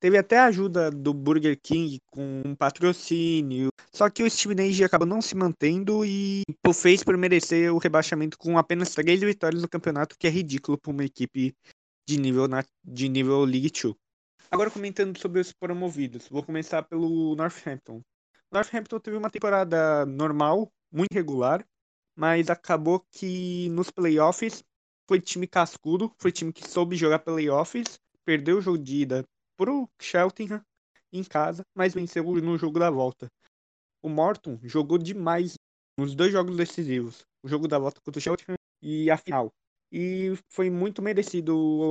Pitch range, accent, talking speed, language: 150-190 Hz, Brazilian, 160 wpm, Portuguese